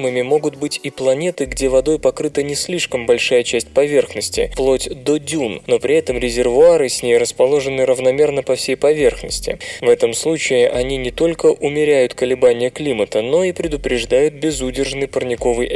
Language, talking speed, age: Russian, 150 wpm, 20-39